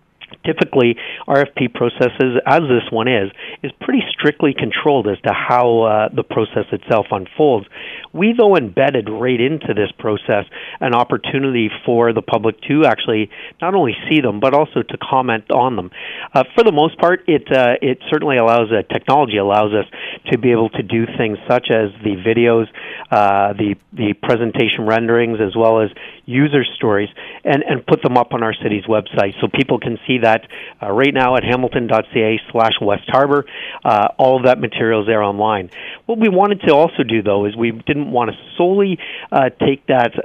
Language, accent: English, American